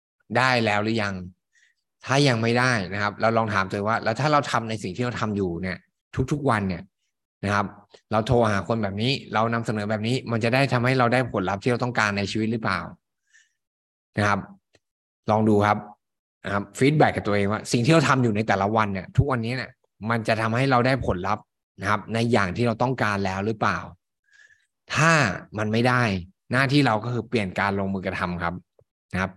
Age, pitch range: 20-39, 100-120 Hz